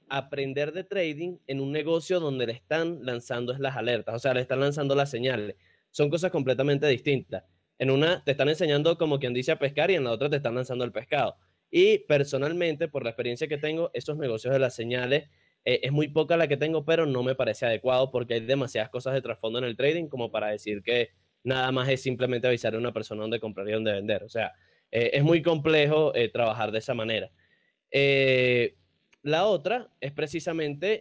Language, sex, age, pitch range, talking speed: Spanish, male, 10-29, 125-150 Hz, 210 wpm